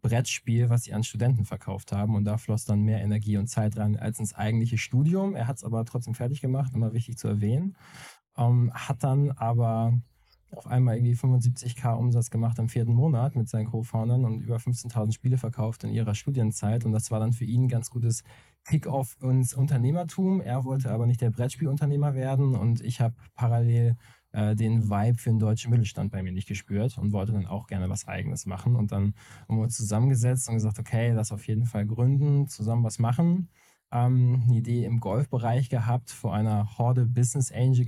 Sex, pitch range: male, 110-125 Hz